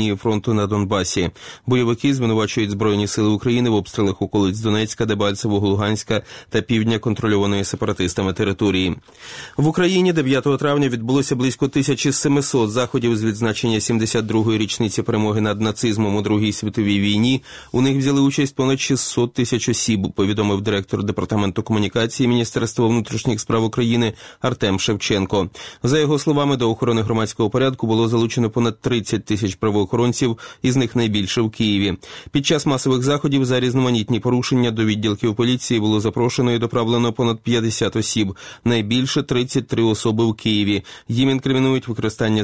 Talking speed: 135 wpm